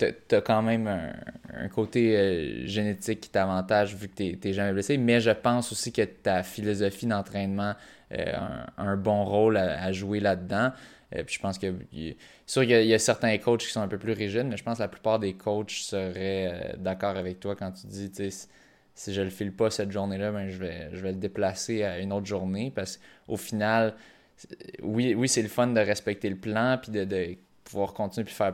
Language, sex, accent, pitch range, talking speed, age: French, male, Canadian, 95-110 Hz, 220 wpm, 20-39